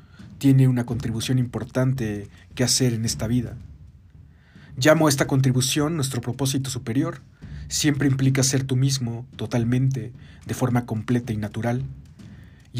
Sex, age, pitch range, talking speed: male, 40-59, 110-135 Hz, 130 wpm